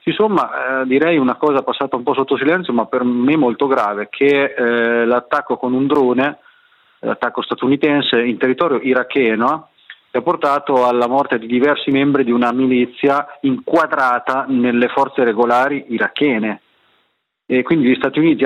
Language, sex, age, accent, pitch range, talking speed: Italian, male, 30-49, native, 115-135 Hz, 150 wpm